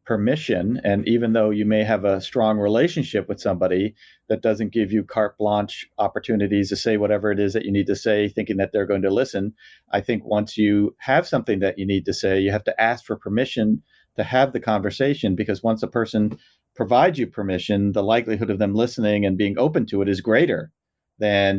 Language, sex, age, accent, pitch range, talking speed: English, male, 40-59, American, 100-110 Hz, 210 wpm